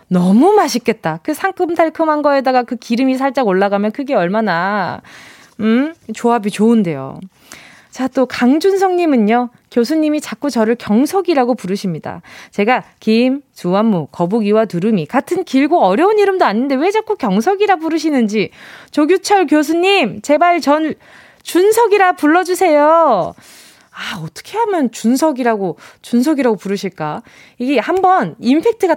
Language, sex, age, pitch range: Korean, female, 20-39, 210-320 Hz